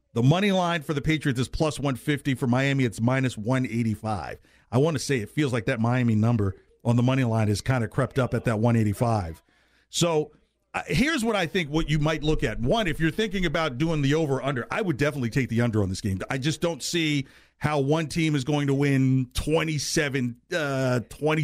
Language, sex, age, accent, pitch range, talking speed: English, male, 40-59, American, 130-170 Hz, 215 wpm